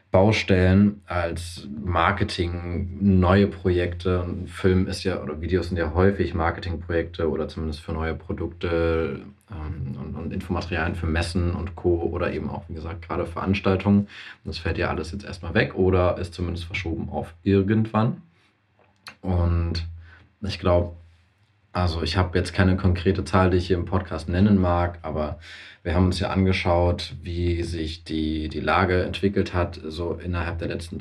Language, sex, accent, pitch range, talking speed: German, male, German, 85-100 Hz, 155 wpm